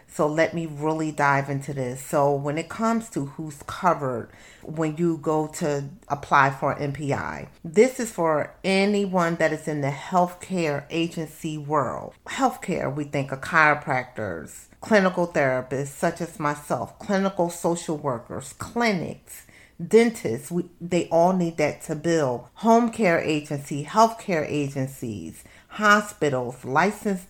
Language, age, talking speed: English, 40-59, 130 wpm